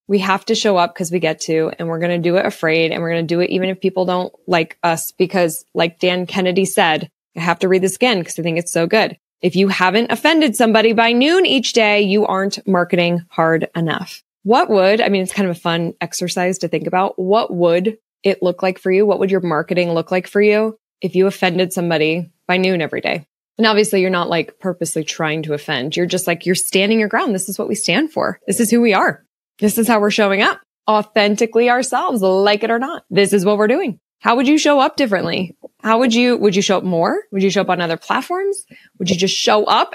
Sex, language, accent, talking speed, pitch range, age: female, English, American, 250 wpm, 175-215 Hz, 20-39